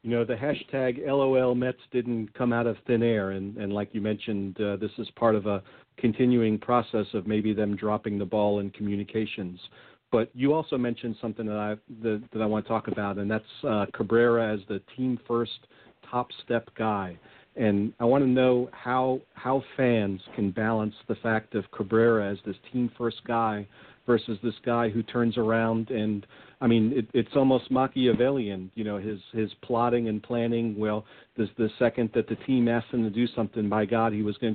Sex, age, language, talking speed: male, 50-69, English, 200 wpm